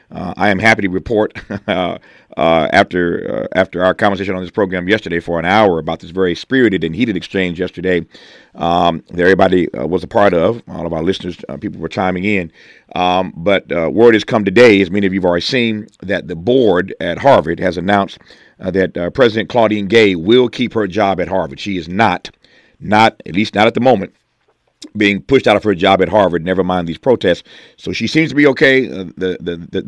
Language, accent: English, American